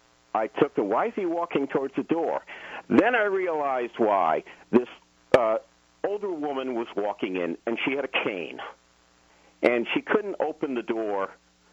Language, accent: English, American